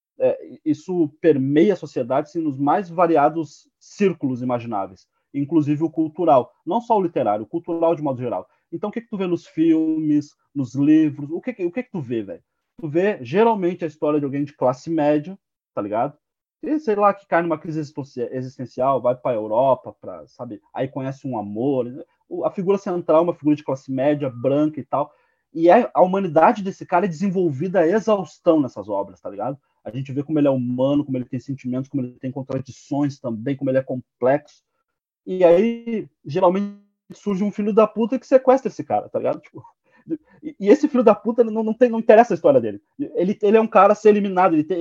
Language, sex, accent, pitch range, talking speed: Portuguese, male, Brazilian, 140-210 Hz, 205 wpm